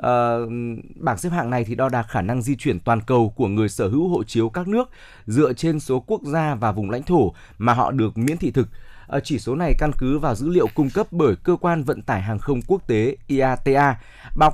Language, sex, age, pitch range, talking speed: Vietnamese, male, 20-39, 115-155 Hz, 245 wpm